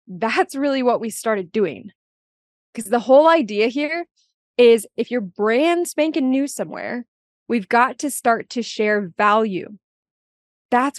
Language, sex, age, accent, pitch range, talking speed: English, female, 20-39, American, 205-255 Hz, 140 wpm